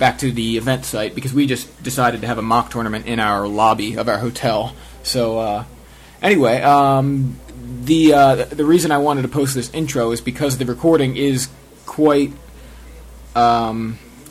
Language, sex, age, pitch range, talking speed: English, male, 20-39, 115-140 Hz, 170 wpm